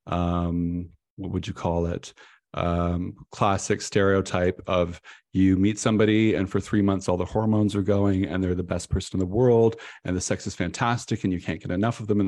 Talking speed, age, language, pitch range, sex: 210 wpm, 40-59, English, 95-110 Hz, male